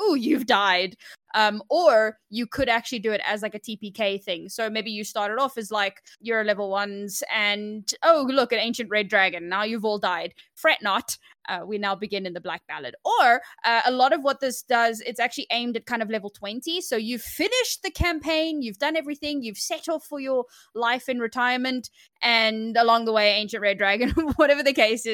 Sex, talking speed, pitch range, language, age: female, 210 wpm, 210-265 Hz, English, 20-39